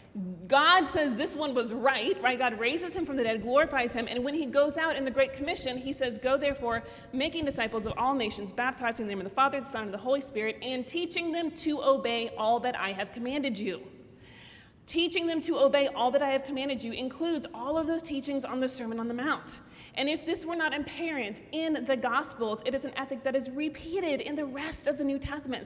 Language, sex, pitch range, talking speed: English, female, 230-290 Hz, 230 wpm